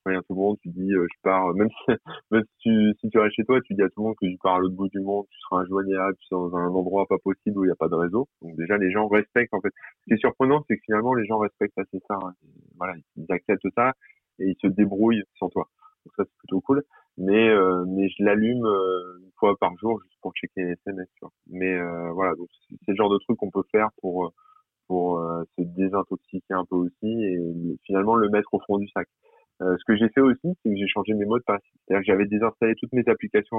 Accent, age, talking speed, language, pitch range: French, 20-39, 275 wpm, French, 90-110 Hz